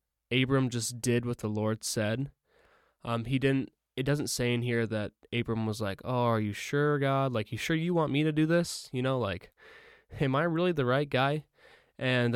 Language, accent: English, American